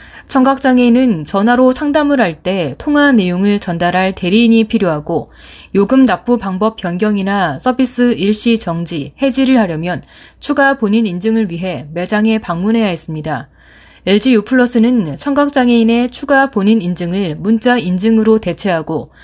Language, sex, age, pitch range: Korean, female, 20-39, 180-245 Hz